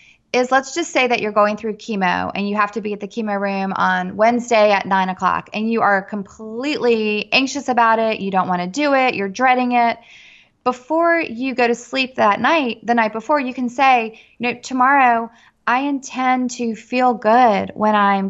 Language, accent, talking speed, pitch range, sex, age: English, American, 205 wpm, 210-250 Hz, female, 20-39